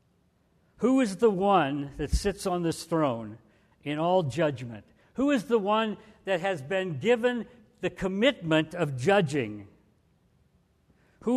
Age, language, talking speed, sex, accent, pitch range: 60-79, English, 130 wpm, male, American, 140-210 Hz